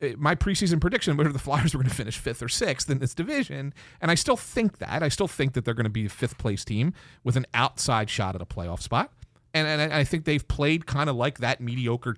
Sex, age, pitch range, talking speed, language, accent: male, 40-59, 120-175 Hz, 255 wpm, English, American